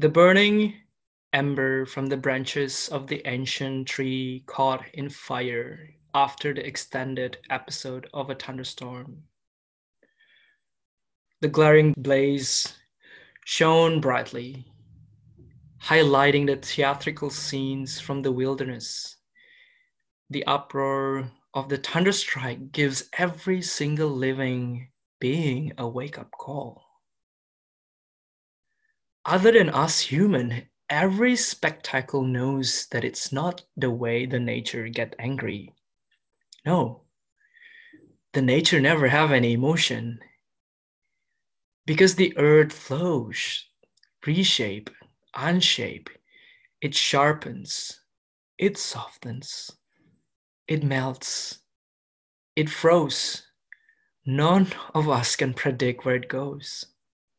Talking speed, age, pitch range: 95 wpm, 20-39, 130-160 Hz